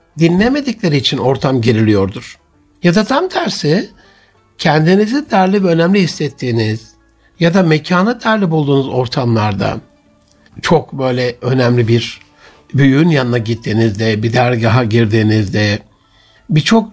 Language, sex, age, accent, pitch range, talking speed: Turkish, male, 60-79, native, 120-160 Hz, 105 wpm